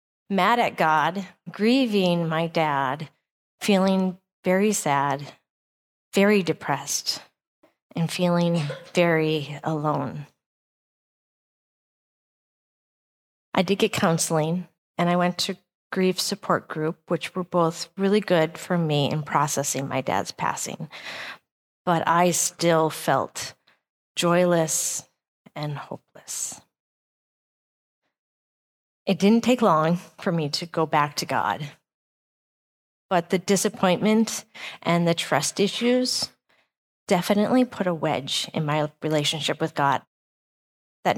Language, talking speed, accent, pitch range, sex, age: English, 105 wpm, American, 150-190 Hz, female, 30-49